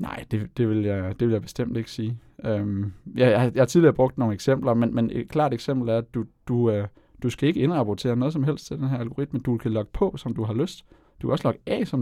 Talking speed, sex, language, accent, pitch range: 275 wpm, male, Danish, native, 110-140 Hz